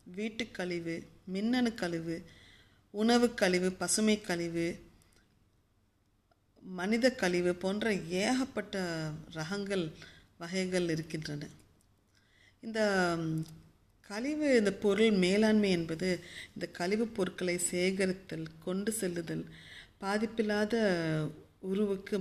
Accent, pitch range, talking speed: native, 165-205 Hz, 75 wpm